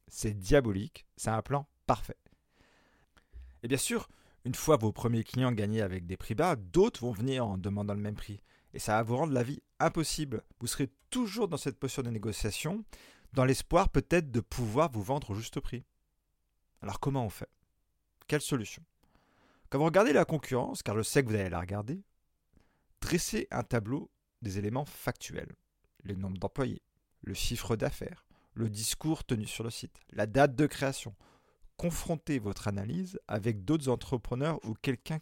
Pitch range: 105-145 Hz